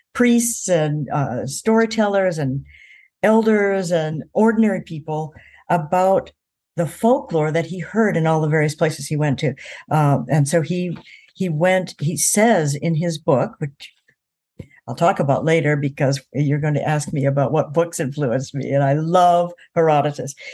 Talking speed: 160 wpm